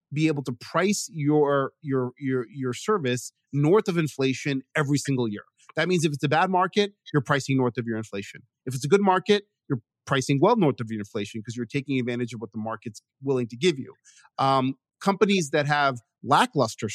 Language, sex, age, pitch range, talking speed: English, male, 30-49, 125-160 Hz, 200 wpm